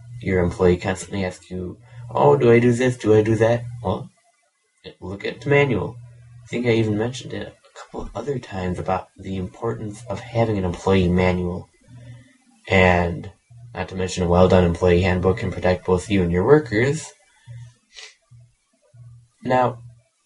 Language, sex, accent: English, male, American